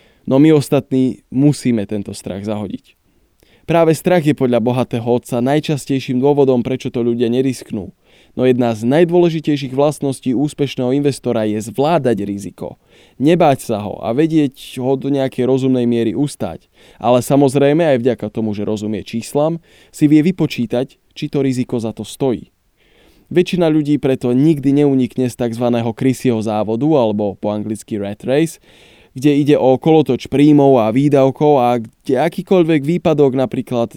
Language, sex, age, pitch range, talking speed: Slovak, male, 20-39, 115-145 Hz, 145 wpm